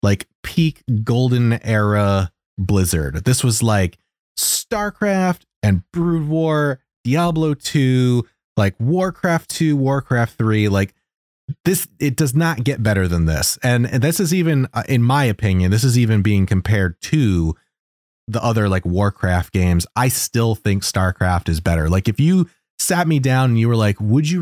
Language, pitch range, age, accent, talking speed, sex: English, 95-130 Hz, 30-49, American, 160 wpm, male